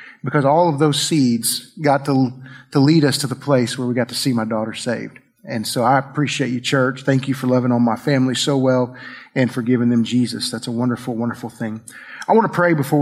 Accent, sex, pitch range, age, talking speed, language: American, male, 125-150 Hz, 40-59, 235 wpm, English